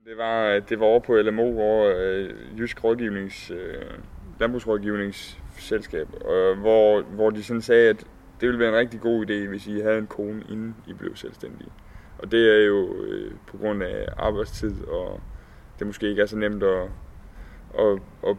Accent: native